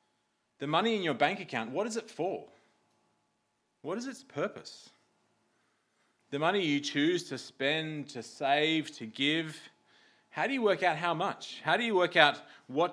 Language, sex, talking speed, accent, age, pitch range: English, male, 170 wpm, Australian, 30-49, 125-165 Hz